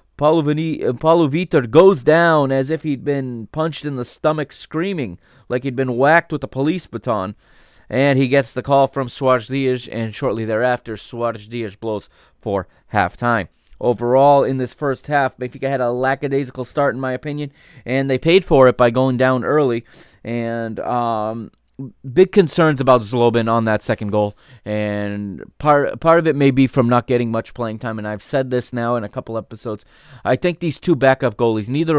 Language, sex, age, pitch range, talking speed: English, male, 20-39, 115-145 Hz, 185 wpm